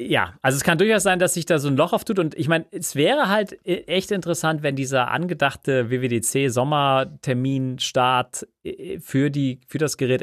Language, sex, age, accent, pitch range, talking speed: German, male, 40-59, German, 120-155 Hz, 180 wpm